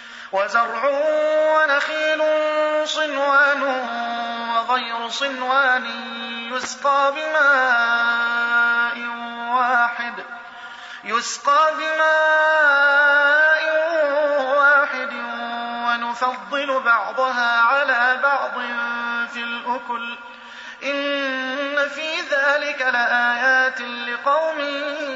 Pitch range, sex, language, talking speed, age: 245-295 Hz, male, Arabic, 45 wpm, 30-49